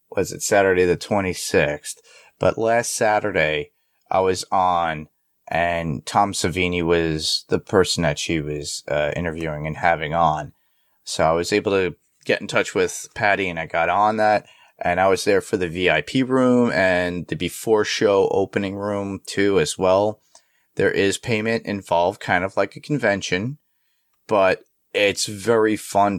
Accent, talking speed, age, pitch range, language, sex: American, 160 wpm, 30-49, 85-105 Hz, English, male